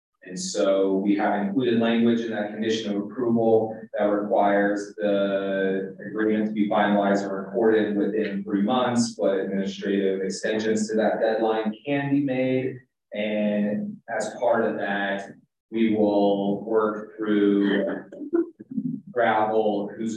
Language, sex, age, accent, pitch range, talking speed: English, male, 30-49, American, 100-115 Hz, 130 wpm